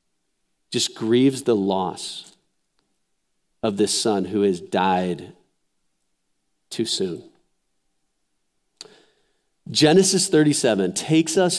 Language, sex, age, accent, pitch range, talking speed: English, male, 40-59, American, 120-185 Hz, 85 wpm